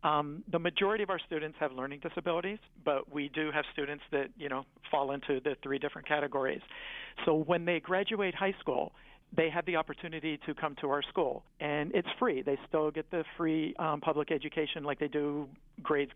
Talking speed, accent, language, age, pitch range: 195 wpm, American, English, 50-69, 145-170 Hz